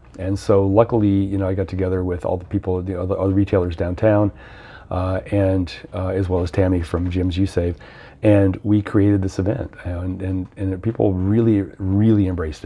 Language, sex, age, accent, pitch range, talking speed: English, male, 40-59, American, 95-105 Hz, 185 wpm